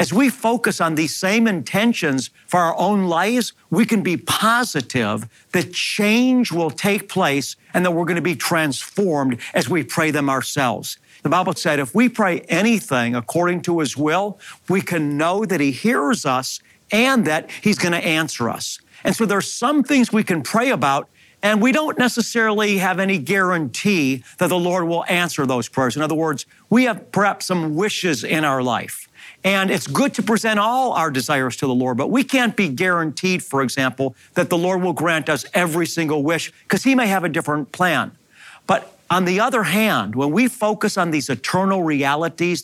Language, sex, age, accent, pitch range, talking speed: English, male, 50-69, American, 150-205 Hz, 190 wpm